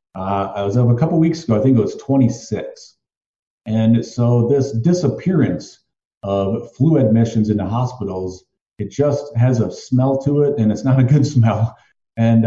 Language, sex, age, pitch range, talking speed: English, male, 40-59, 105-135 Hz, 185 wpm